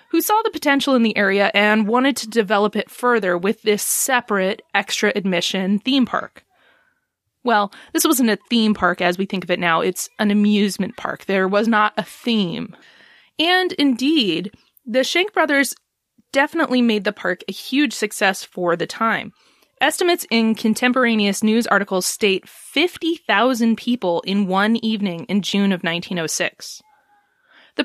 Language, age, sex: English, 20-39, female